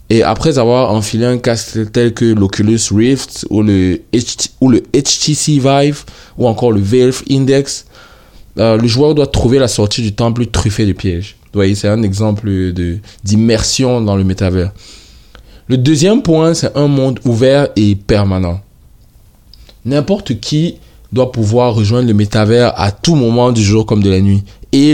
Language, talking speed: French, 170 wpm